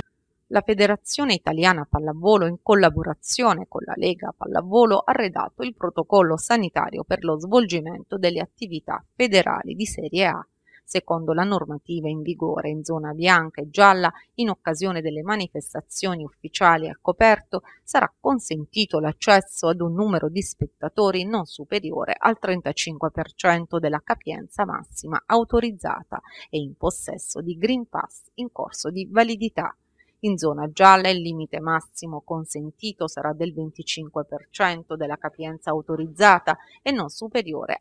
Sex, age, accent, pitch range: female, 30-49, native, 155-205 Hz